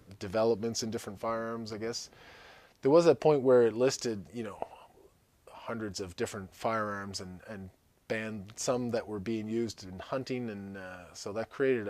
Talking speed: 170 wpm